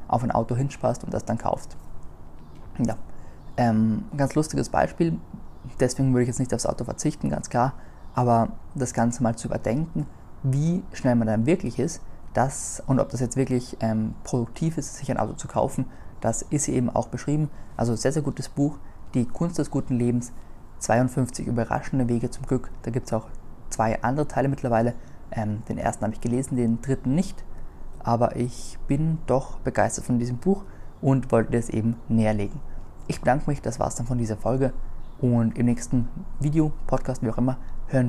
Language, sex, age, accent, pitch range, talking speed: German, male, 20-39, German, 110-135 Hz, 185 wpm